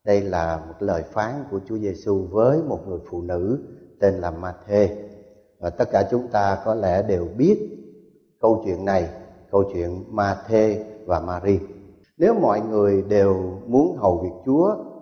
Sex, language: male, Thai